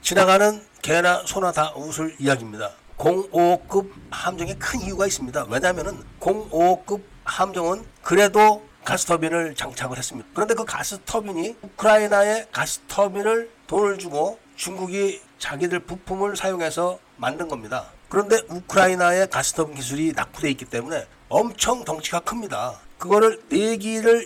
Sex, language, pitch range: male, Korean, 165-210 Hz